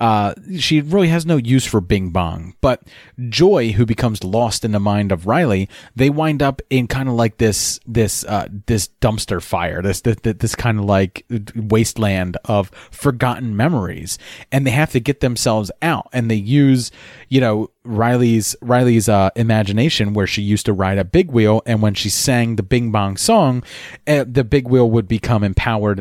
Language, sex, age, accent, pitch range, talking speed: English, male, 30-49, American, 100-125 Hz, 185 wpm